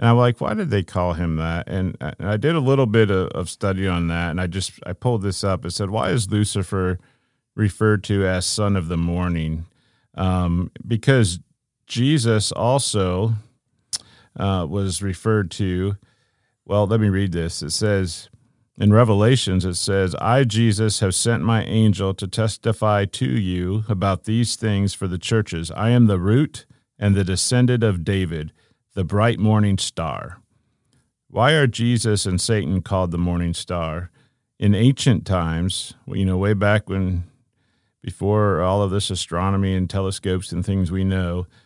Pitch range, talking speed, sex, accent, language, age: 95-115 Hz, 165 wpm, male, American, English, 40-59